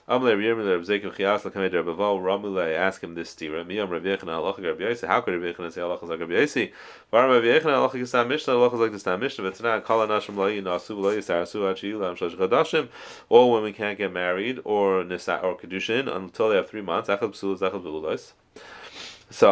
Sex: male